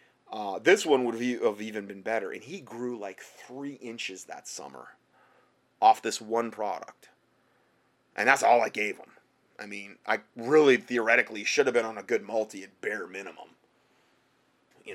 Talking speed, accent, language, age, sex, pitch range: 170 wpm, American, English, 30-49, male, 110-135 Hz